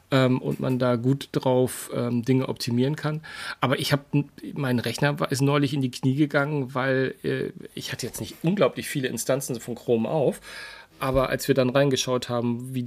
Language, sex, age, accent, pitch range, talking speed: German, male, 40-59, German, 125-150 Hz, 175 wpm